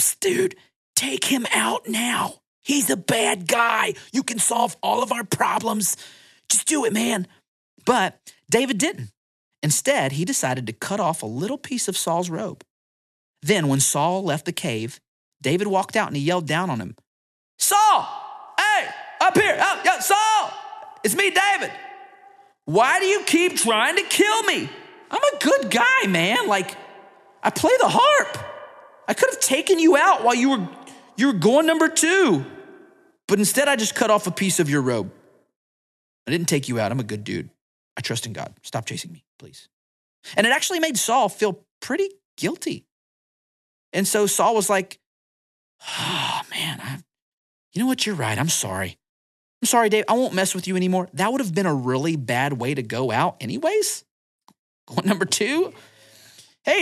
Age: 40-59